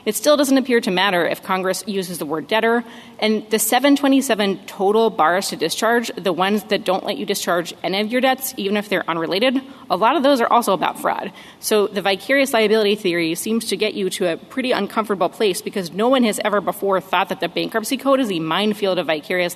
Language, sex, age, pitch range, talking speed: English, female, 30-49, 185-225 Hz, 220 wpm